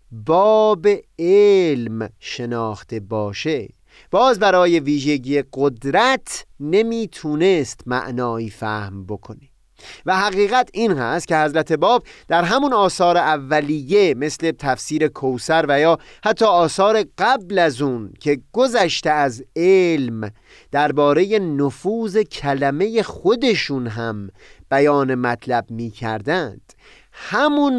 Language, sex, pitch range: Persian, male, 125-195 Hz